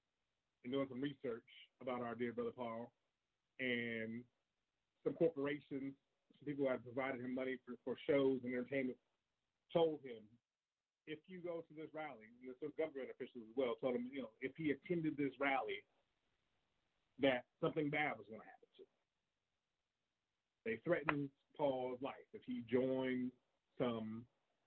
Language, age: English, 30-49